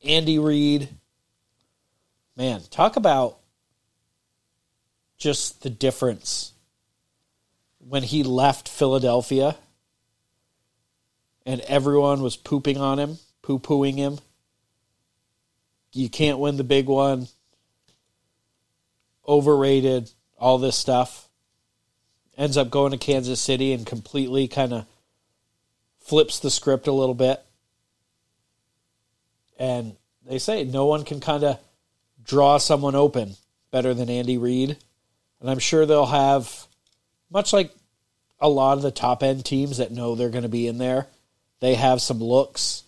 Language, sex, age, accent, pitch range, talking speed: English, male, 40-59, American, 120-140 Hz, 120 wpm